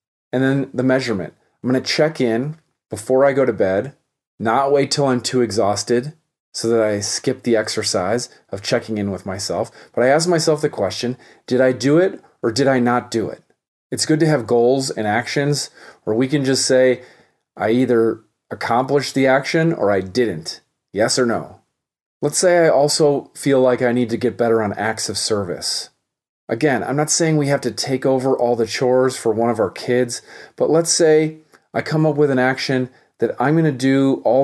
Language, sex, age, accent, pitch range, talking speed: English, male, 40-59, American, 115-140 Hz, 205 wpm